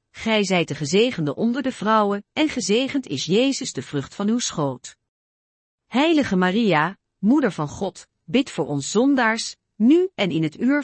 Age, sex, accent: 40-59, female, Dutch